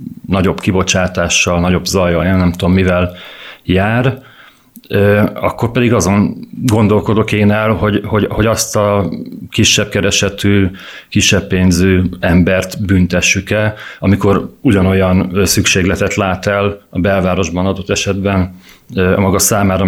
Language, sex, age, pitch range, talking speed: Hungarian, male, 40-59, 95-105 Hz, 110 wpm